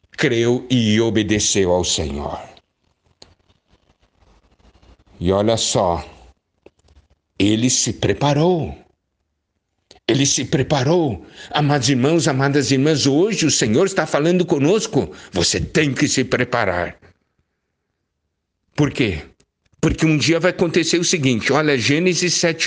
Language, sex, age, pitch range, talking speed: Portuguese, male, 60-79, 95-145 Hz, 105 wpm